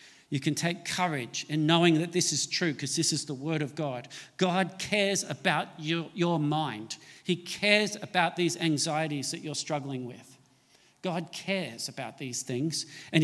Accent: Australian